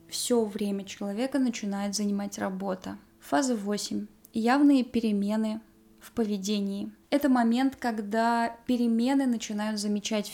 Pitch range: 205-250 Hz